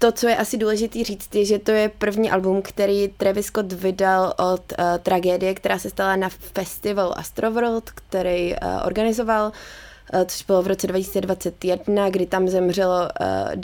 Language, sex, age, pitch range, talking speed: Czech, female, 20-39, 180-200 Hz, 165 wpm